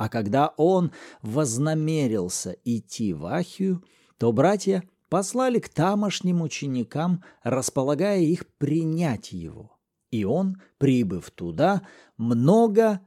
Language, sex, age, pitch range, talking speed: Russian, male, 40-59, 115-185 Hz, 100 wpm